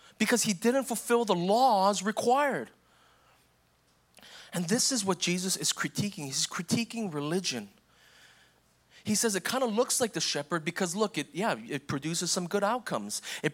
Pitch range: 175-225 Hz